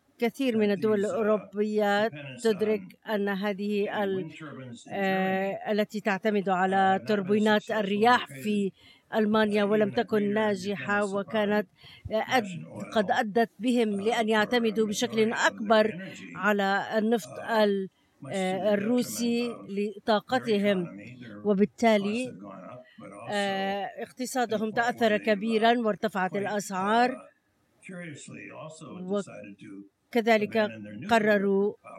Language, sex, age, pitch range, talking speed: Arabic, female, 50-69, 200-225 Hz, 70 wpm